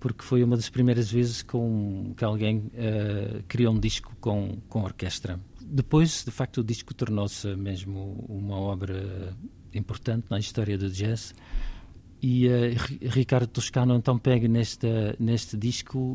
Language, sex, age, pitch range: Portuguese, male, 50-69, 100-125 Hz